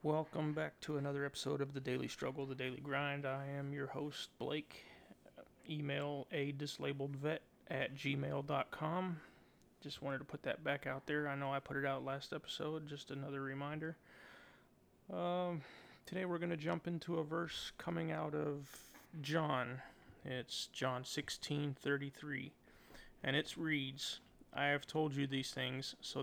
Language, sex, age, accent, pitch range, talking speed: English, male, 30-49, American, 130-150 Hz, 160 wpm